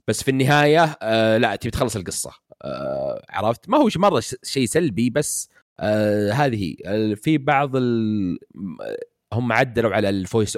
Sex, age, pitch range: male, 30-49, 95-125 Hz